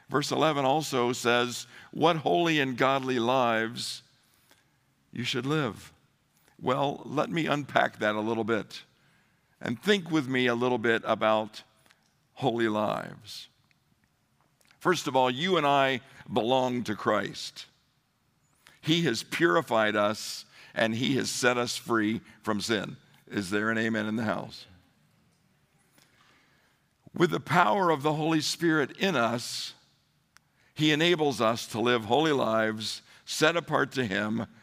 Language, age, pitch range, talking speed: English, 60-79, 110-145 Hz, 135 wpm